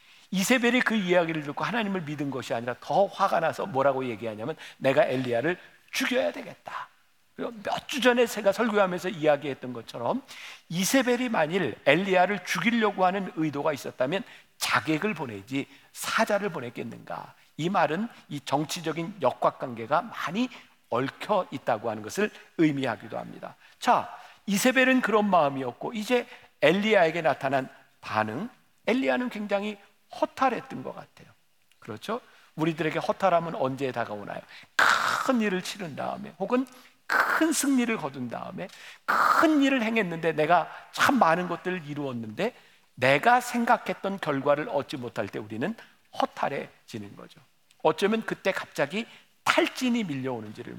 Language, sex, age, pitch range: Korean, male, 50-69, 145-230 Hz